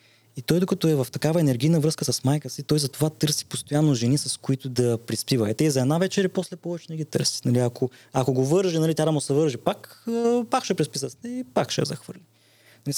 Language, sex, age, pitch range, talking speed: Bulgarian, male, 20-39, 115-155 Hz, 240 wpm